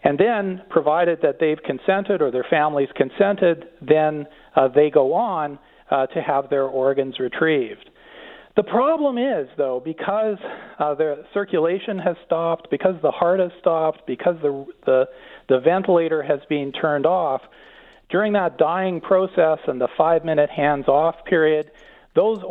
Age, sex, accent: 50-69, male, American